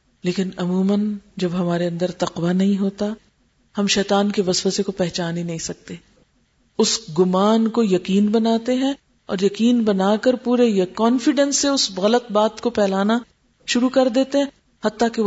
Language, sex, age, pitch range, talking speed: Urdu, female, 40-59, 175-210 Hz, 155 wpm